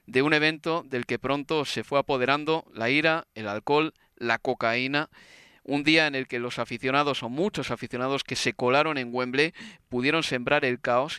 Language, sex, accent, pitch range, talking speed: Spanish, male, Spanish, 125-160 Hz, 180 wpm